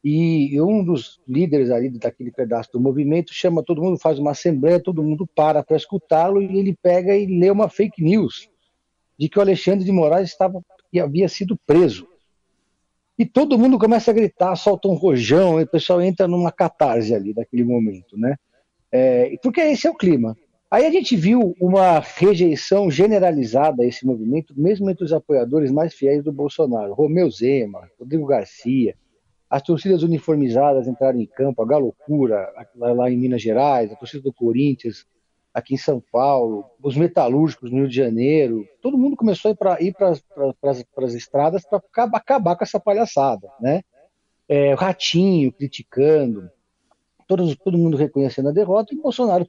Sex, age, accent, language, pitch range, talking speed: male, 50-69, Brazilian, Portuguese, 125-190 Hz, 165 wpm